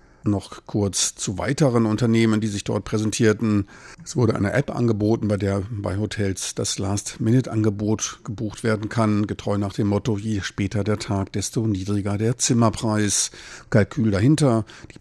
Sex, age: male, 50-69